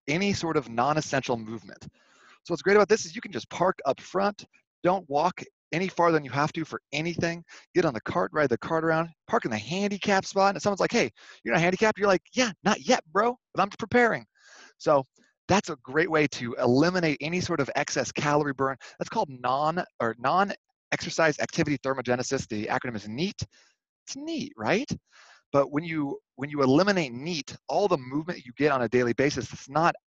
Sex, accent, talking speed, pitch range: male, American, 200 wpm, 135-185 Hz